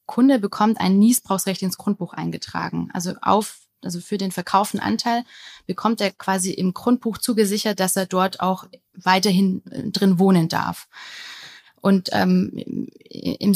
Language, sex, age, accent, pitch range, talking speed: German, female, 20-39, German, 185-220 Hz, 135 wpm